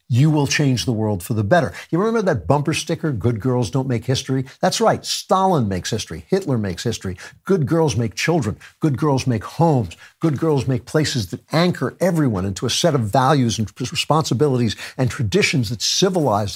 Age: 60-79